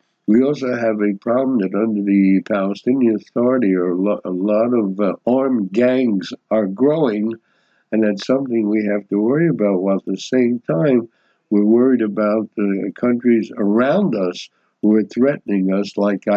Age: 60-79